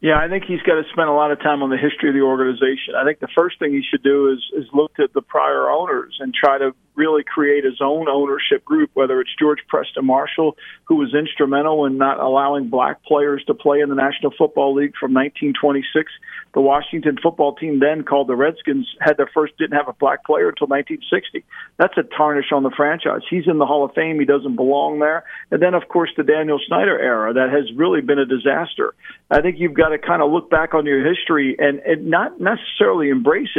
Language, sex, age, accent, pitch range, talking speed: English, male, 50-69, American, 140-180 Hz, 230 wpm